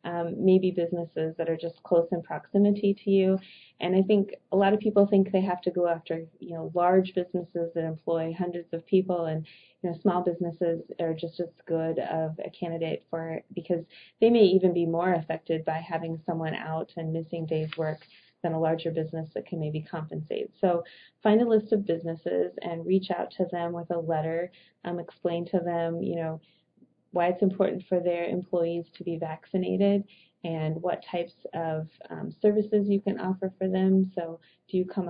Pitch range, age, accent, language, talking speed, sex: 165-190 Hz, 20-39, American, English, 195 wpm, female